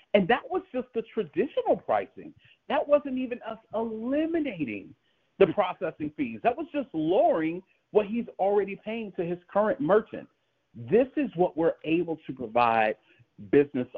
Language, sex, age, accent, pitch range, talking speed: English, male, 50-69, American, 140-220 Hz, 150 wpm